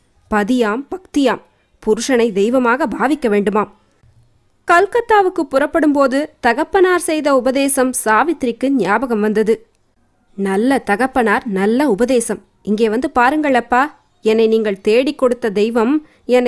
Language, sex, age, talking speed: Tamil, female, 20-39, 105 wpm